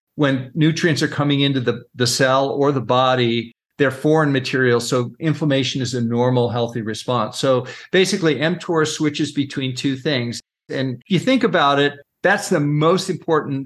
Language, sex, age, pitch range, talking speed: English, male, 50-69, 120-150 Hz, 165 wpm